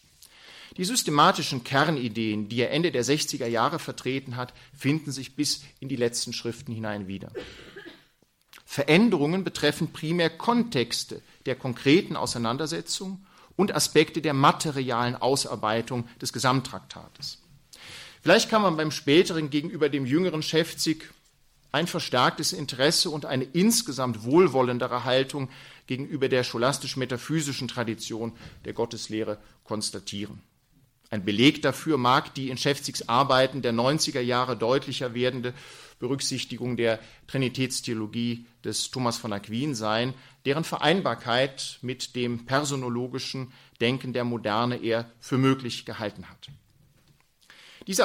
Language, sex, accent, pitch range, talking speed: German, male, German, 120-150 Hz, 115 wpm